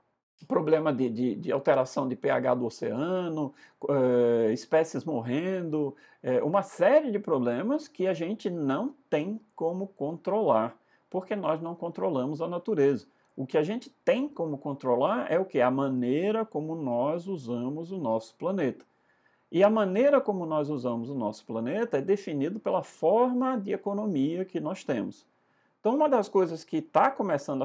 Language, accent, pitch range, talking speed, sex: Portuguese, Brazilian, 135-215 Hz, 150 wpm, male